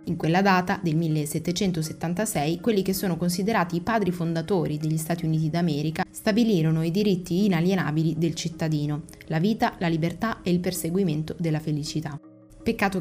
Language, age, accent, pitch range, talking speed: Italian, 20-39, native, 160-190 Hz, 150 wpm